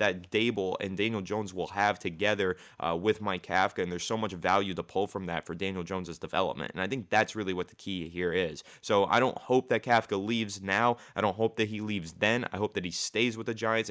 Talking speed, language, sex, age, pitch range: 250 wpm, English, male, 20-39, 95-115 Hz